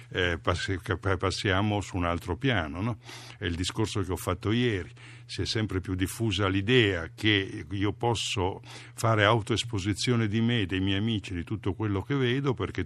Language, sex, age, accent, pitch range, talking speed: Italian, male, 50-69, native, 100-125 Hz, 170 wpm